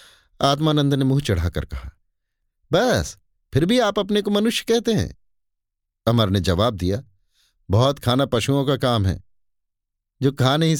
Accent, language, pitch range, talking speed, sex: native, Hindi, 95-130 Hz, 150 wpm, male